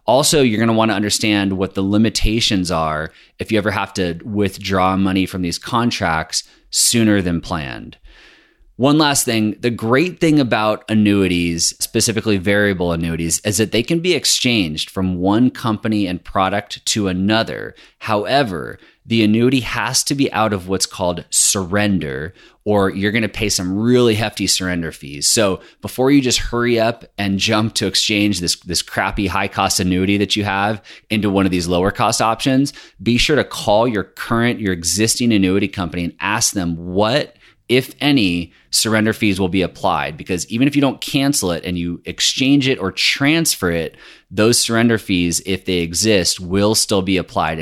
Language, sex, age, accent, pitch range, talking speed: English, male, 30-49, American, 90-110 Hz, 175 wpm